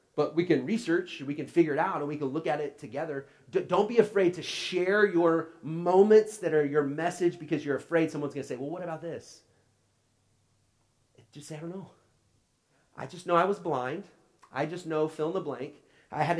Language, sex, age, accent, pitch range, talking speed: English, male, 30-49, American, 150-195 Hz, 210 wpm